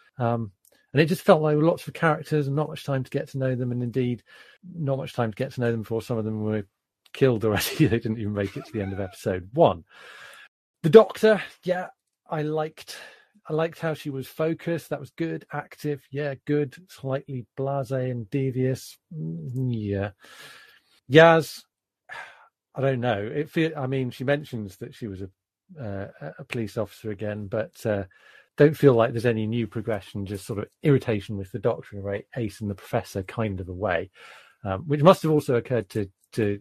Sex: male